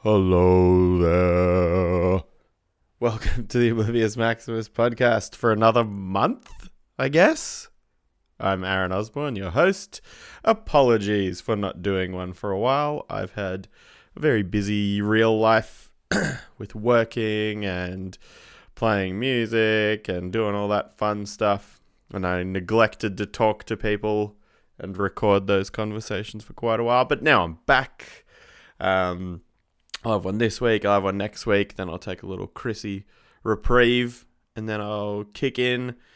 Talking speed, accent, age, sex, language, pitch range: 145 wpm, Australian, 20-39, male, English, 95-115 Hz